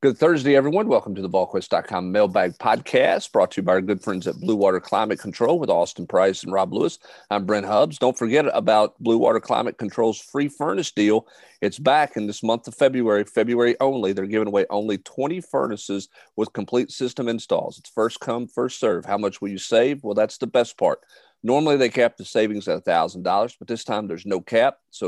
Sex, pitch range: male, 100-125 Hz